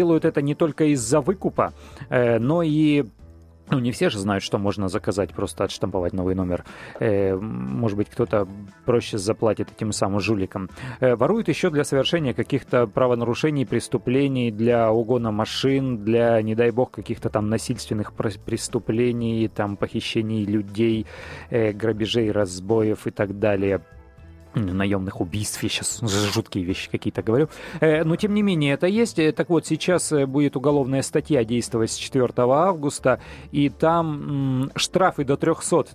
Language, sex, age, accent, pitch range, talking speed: Russian, male, 30-49, native, 110-145 Hz, 140 wpm